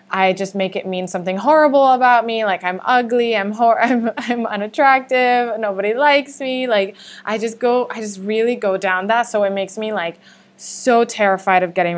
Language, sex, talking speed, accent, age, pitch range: English, female, 195 wpm, American, 20-39, 190-240 Hz